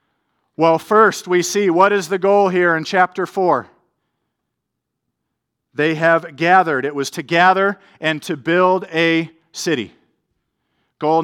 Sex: male